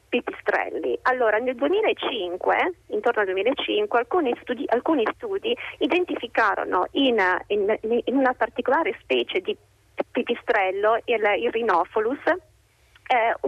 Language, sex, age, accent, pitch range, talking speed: Italian, female, 30-49, native, 215-335 Hz, 105 wpm